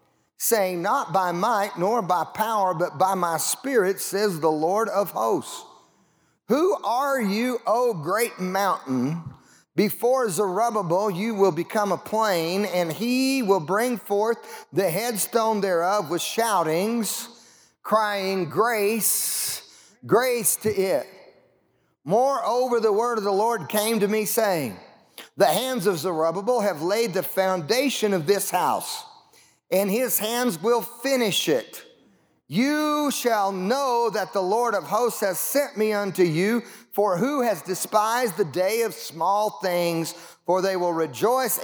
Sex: male